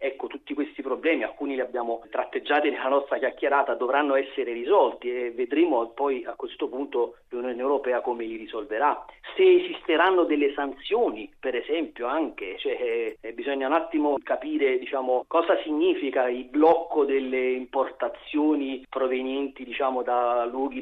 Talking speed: 140 wpm